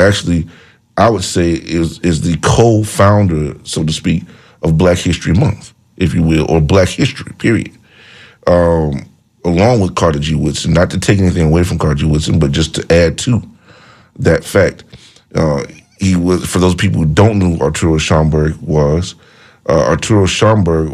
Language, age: English, 40-59